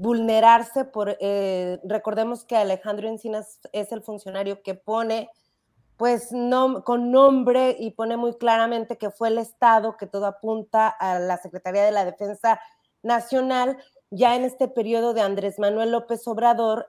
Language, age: Spanish, 30-49